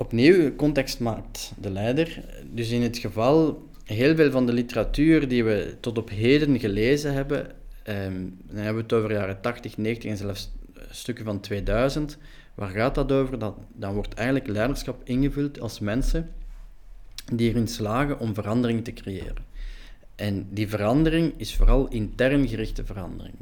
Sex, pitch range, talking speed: male, 100-135 Hz, 160 wpm